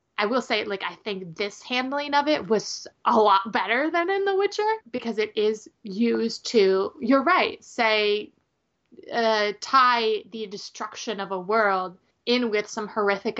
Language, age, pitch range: English, 20-39, 200-250 Hz